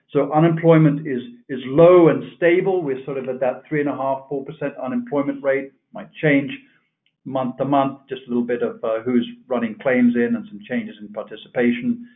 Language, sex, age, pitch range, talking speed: English, male, 50-69, 120-160 Hz, 200 wpm